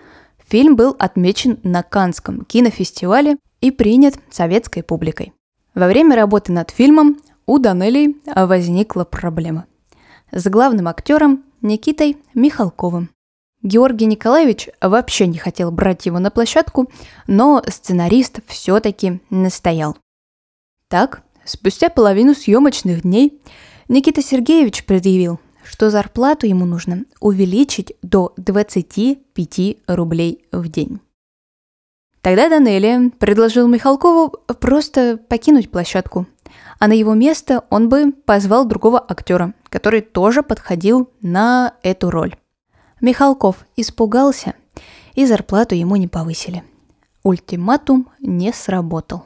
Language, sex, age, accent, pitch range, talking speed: Russian, female, 20-39, native, 185-260 Hz, 105 wpm